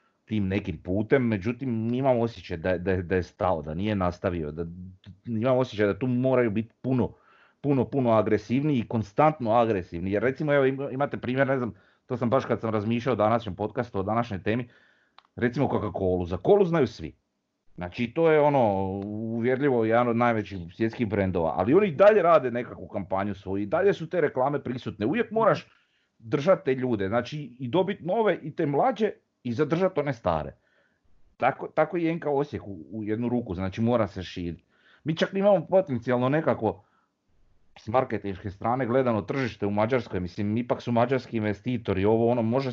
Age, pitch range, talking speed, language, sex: 30-49, 100-130 Hz, 180 wpm, Croatian, male